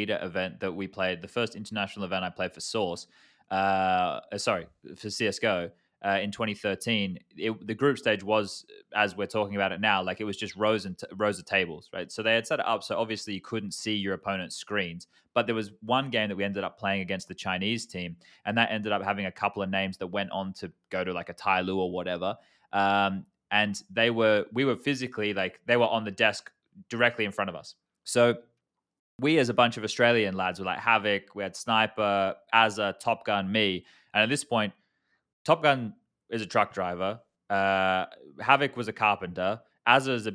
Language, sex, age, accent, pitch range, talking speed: English, male, 20-39, Australian, 95-115 Hz, 210 wpm